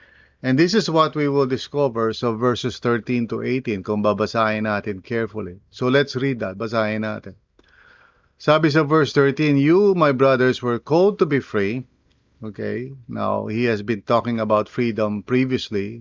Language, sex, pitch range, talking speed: English, male, 110-140 Hz, 160 wpm